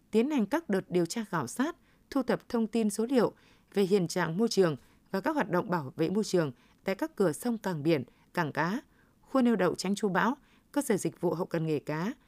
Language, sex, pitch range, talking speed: Vietnamese, female, 175-230 Hz, 240 wpm